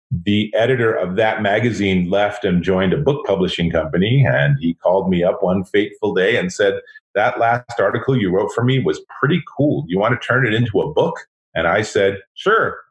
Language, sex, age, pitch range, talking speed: English, male, 40-59, 90-120 Hz, 205 wpm